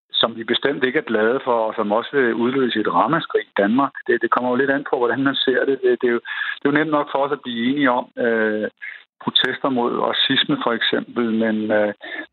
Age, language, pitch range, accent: 60-79, Danish, 110-130 Hz, native